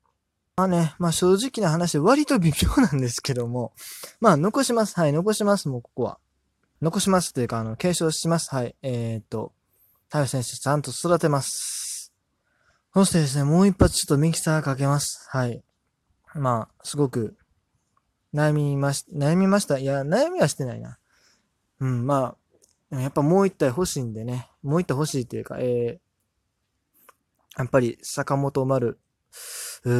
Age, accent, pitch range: 20-39, native, 125-180 Hz